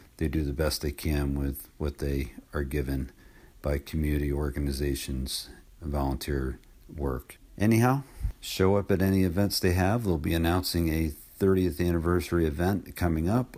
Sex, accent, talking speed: male, American, 150 wpm